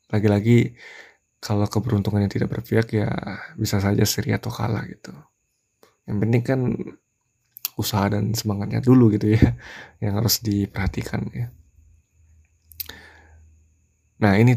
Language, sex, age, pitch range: Indonesian, male, 20-39, 105-115 Hz